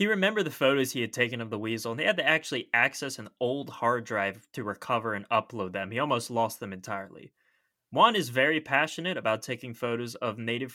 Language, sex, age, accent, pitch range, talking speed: English, male, 20-39, American, 115-150 Hz, 220 wpm